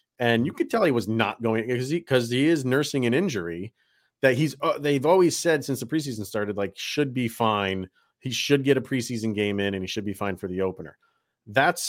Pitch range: 105-130 Hz